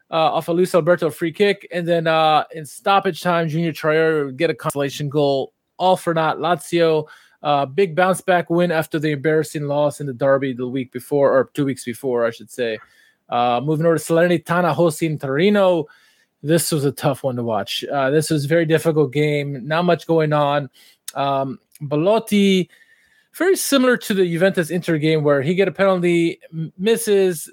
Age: 20-39